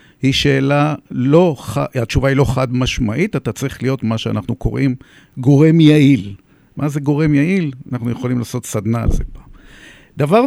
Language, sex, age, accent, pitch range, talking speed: Hebrew, male, 50-69, native, 110-145 Hz, 165 wpm